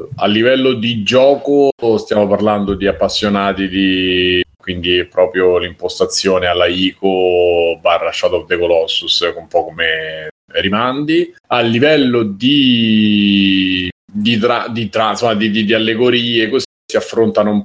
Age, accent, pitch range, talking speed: 30-49, native, 90-115 Hz, 135 wpm